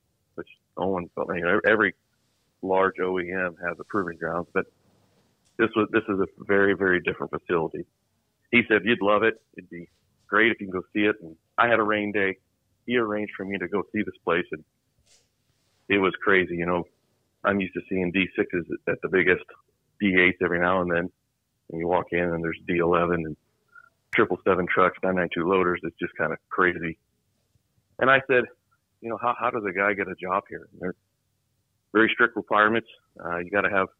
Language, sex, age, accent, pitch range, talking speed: English, male, 40-59, American, 90-110 Hz, 205 wpm